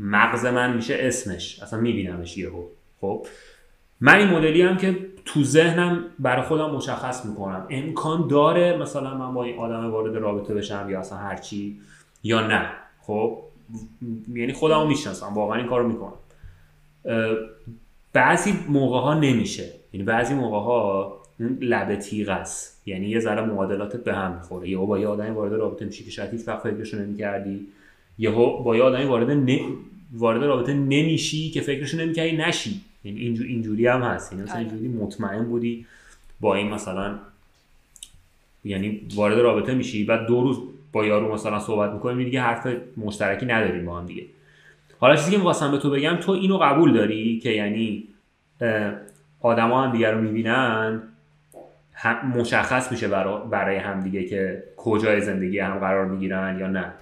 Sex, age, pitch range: male, 30-49, 100-130 Hz